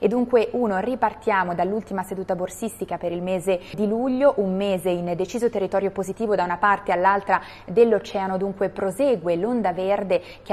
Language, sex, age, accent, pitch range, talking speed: Italian, female, 20-39, native, 185-220 Hz, 160 wpm